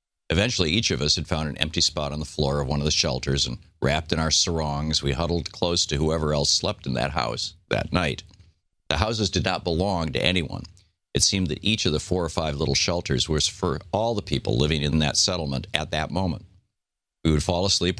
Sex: male